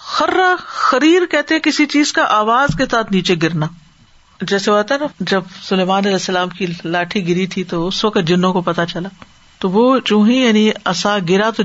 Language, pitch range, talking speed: Urdu, 175-235 Hz, 205 wpm